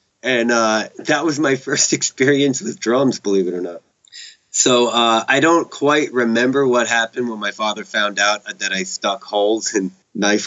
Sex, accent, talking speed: male, American, 185 wpm